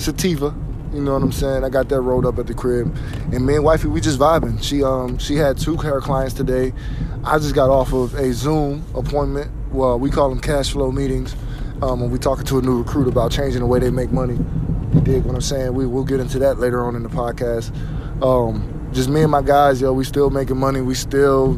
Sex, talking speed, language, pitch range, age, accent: male, 240 wpm, English, 130-145 Hz, 20-39, American